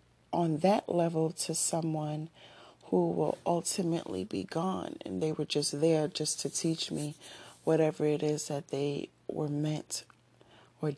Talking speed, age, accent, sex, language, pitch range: 150 wpm, 40-59, American, female, English, 145-180 Hz